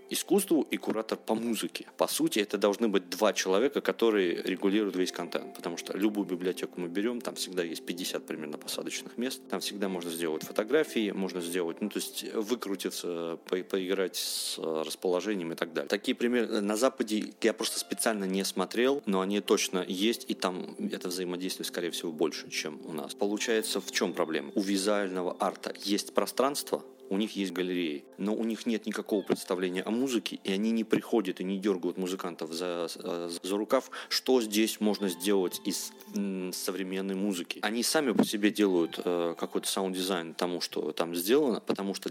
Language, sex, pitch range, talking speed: Russian, male, 90-110 Hz, 180 wpm